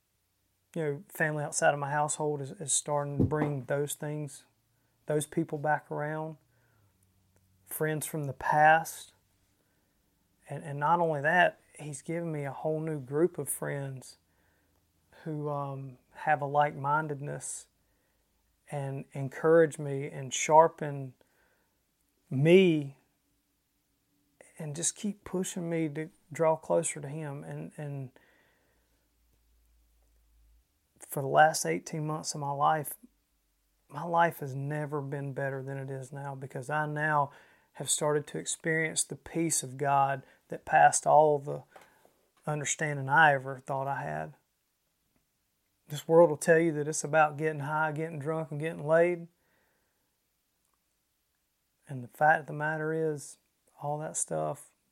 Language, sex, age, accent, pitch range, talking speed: English, male, 30-49, American, 130-155 Hz, 135 wpm